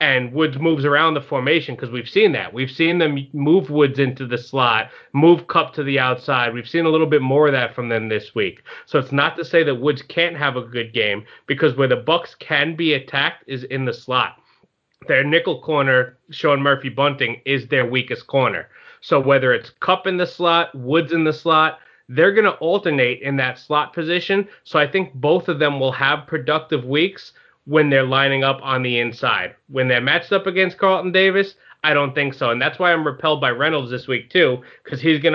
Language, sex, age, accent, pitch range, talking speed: English, male, 30-49, American, 125-155 Hz, 215 wpm